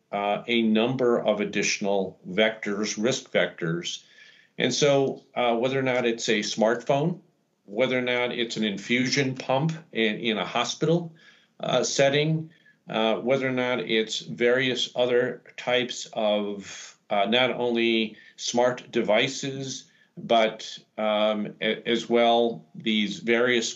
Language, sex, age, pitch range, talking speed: English, male, 40-59, 110-130 Hz, 125 wpm